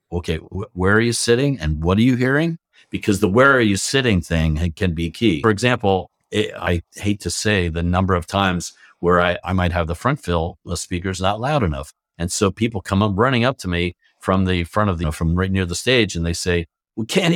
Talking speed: 240 wpm